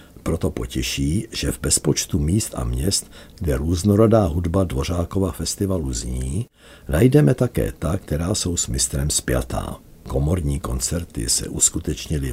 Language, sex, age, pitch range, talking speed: Czech, male, 60-79, 70-95 Hz, 125 wpm